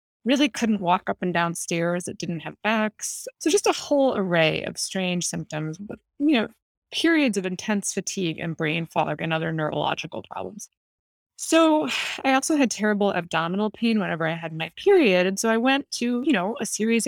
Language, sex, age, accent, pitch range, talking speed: English, female, 20-39, American, 170-235 Hz, 190 wpm